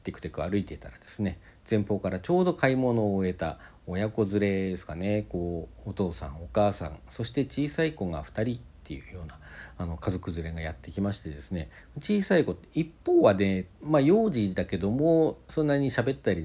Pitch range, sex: 90-145 Hz, male